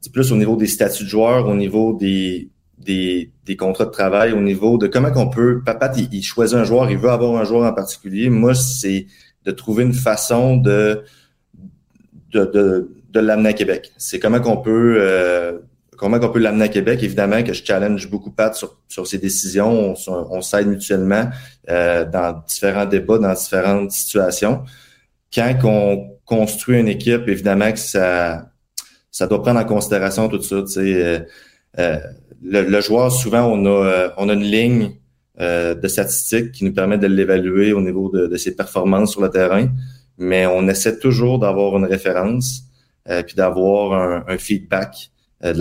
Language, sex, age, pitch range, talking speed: French, male, 30-49, 95-115 Hz, 180 wpm